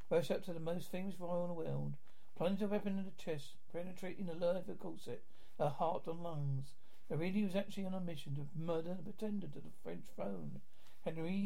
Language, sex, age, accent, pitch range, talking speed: English, male, 60-79, British, 150-190 Hz, 225 wpm